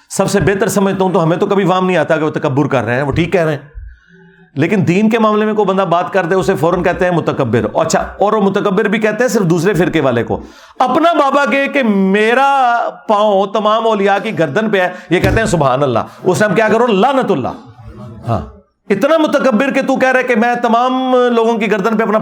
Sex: male